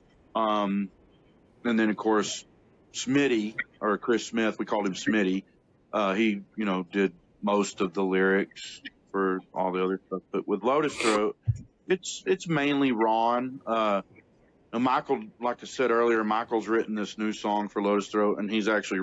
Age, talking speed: 40-59, 165 wpm